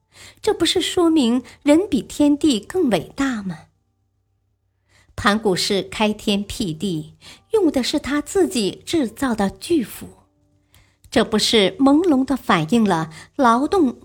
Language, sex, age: Chinese, male, 50-69